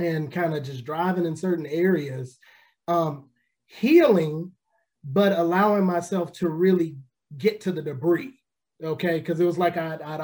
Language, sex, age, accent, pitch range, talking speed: English, male, 30-49, American, 155-175 Hz, 150 wpm